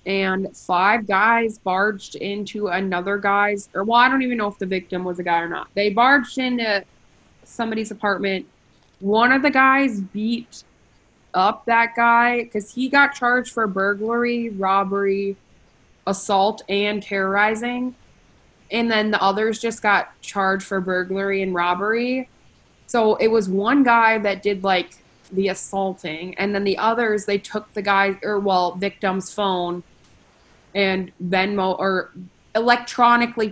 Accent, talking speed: American, 145 wpm